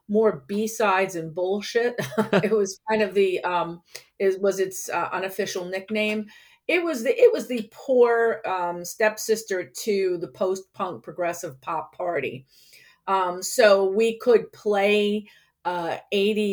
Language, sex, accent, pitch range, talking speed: English, female, American, 170-205 Hz, 135 wpm